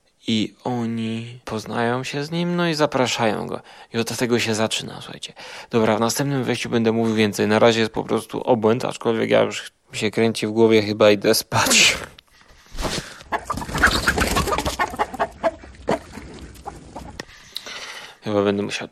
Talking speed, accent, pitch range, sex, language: 135 wpm, native, 110-125 Hz, male, Polish